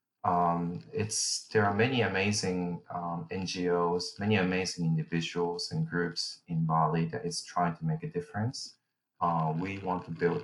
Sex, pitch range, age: male, 85-105 Hz, 20-39